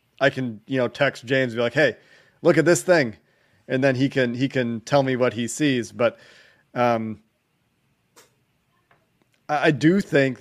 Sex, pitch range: male, 125-155 Hz